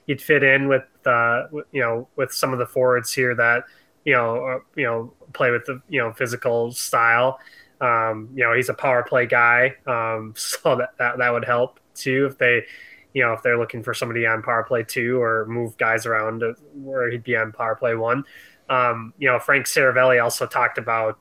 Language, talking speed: English, 210 wpm